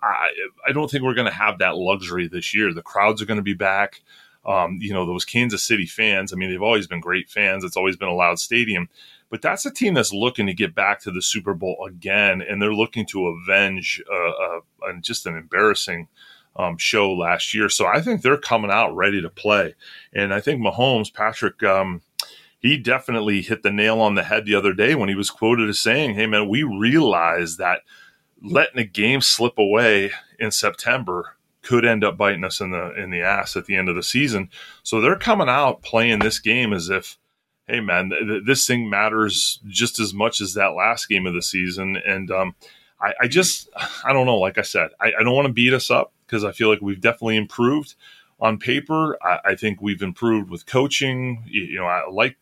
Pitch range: 100-120 Hz